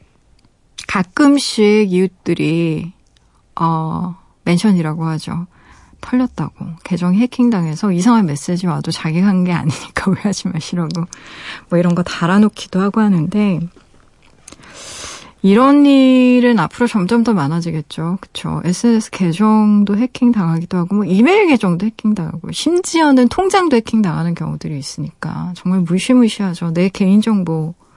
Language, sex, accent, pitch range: Korean, female, native, 175-220 Hz